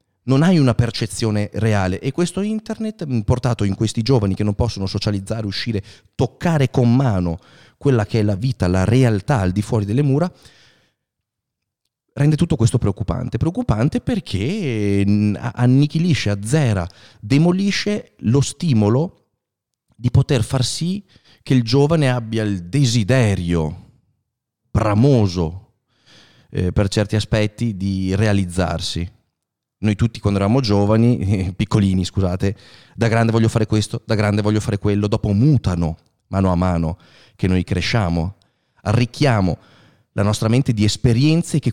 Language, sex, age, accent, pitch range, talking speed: Italian, male, 30-49, native, 100-130 Hz, 135 wpm